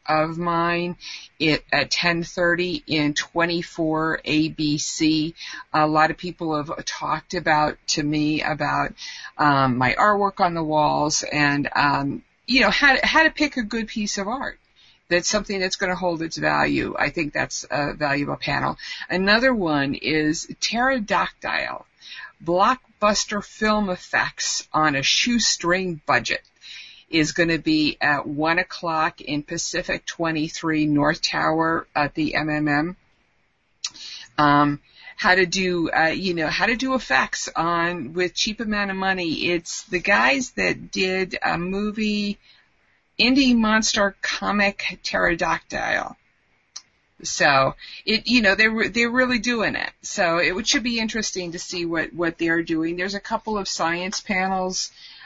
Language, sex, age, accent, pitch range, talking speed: English, female, 50-69, American, 155-210 Hz, 145 wpm